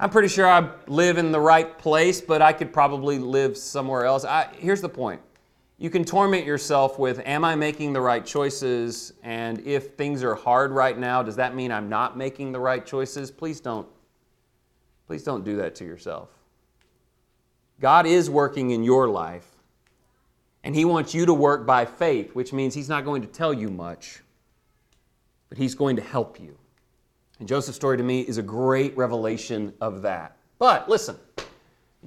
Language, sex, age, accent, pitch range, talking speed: English, male, 40-59, American, 130-175 Hz, 180 wpm